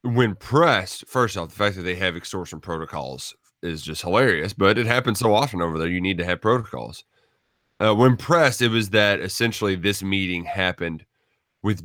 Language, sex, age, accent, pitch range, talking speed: English, male, 30-49, American, 95-140 Hz, 185 wpm